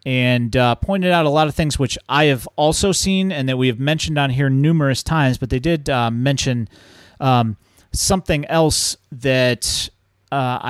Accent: American